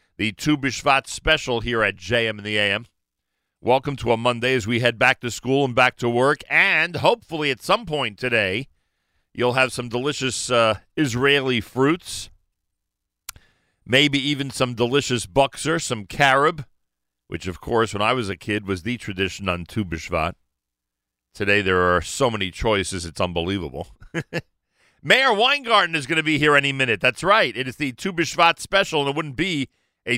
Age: 40-59